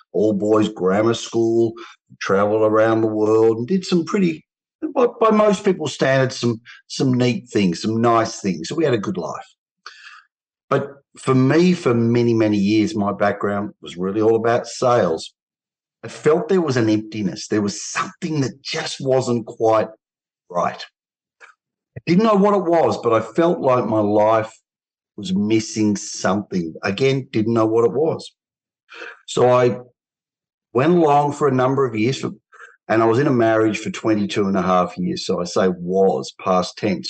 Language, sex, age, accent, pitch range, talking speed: English, male, 50-69, Australian, 110-150 Hz, 170 wpm